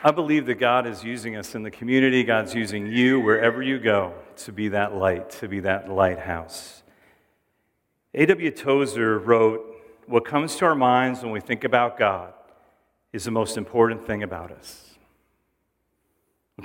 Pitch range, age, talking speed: 110-130 Hz, 40-59, 160 wpm